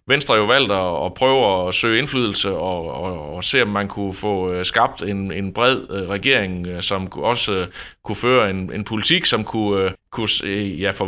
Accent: native